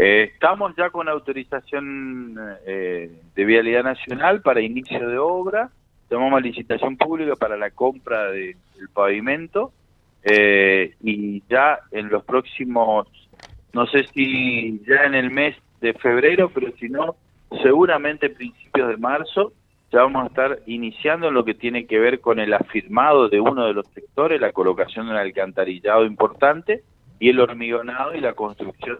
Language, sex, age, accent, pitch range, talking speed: Spanish, male, 40-59, Argentinian, 100-135 Hz, 155 wpm